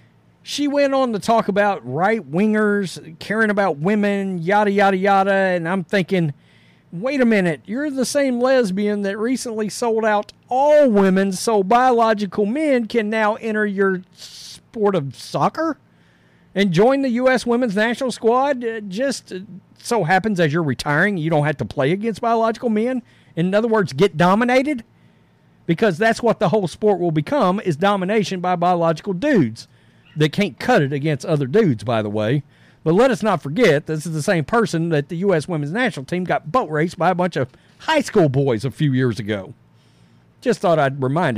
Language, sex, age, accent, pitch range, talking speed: English, male, 50-69, American, 165-235 Hz, 175 wpm